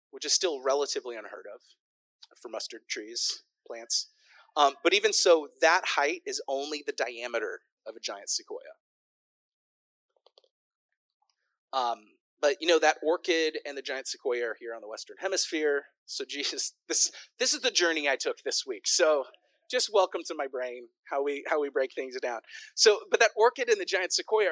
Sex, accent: male, American